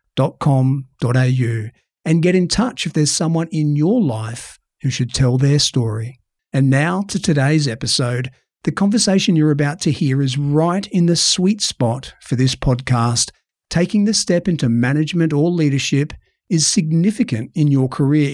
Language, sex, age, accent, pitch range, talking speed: English, male, 50-69, Australian, 130-175 Hz, 165 wpm